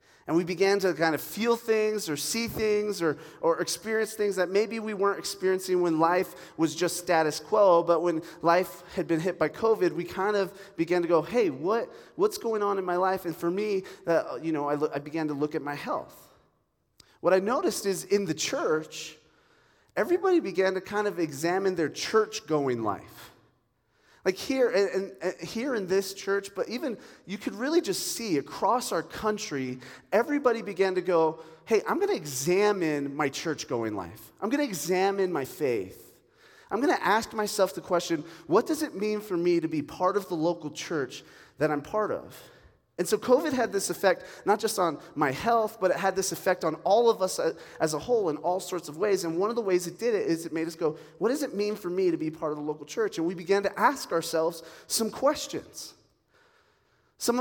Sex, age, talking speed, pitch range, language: male, 30-49, 210 wpm, 165-215 Hz, English